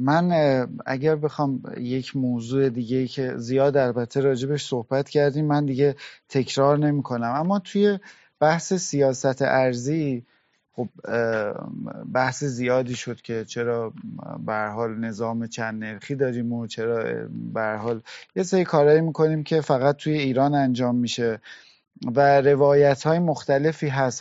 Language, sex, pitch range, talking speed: Persian, male, 120-150 Hz, 125 wpm